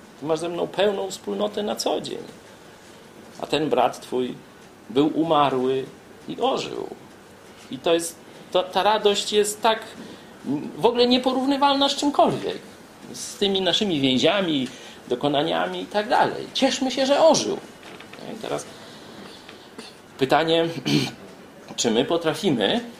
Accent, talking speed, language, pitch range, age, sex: native, 115 wpm, Polish, 130-210 Hz, 40-59, male